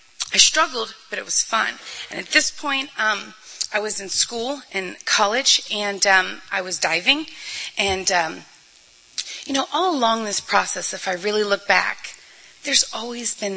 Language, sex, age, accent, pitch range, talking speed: English, female, 30-49, American, 185-235 Hz, 170 wpm